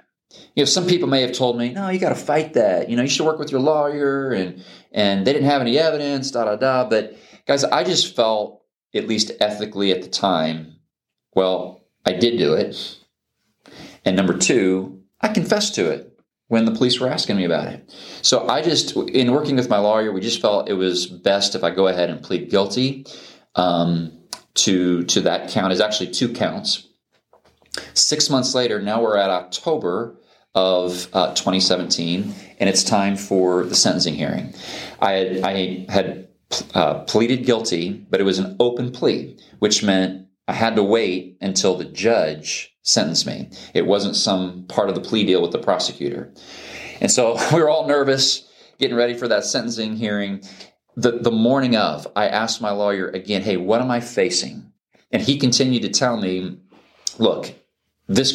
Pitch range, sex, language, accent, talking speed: 95-125 Hz, male, English, American, 185 wpm